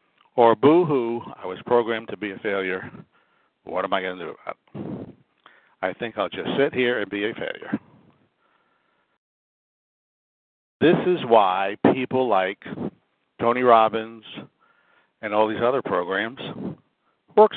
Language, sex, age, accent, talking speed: English, male, 60-79, American, 135 wpm